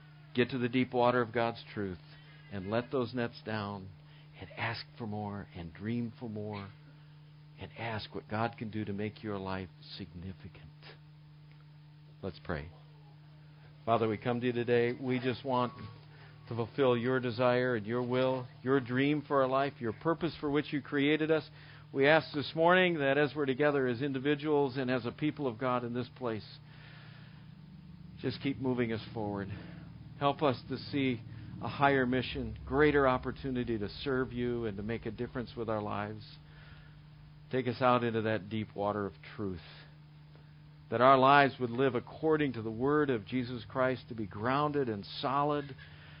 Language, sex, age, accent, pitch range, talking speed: English, male, 50-69, American, 115-150 Hz, 170 wpm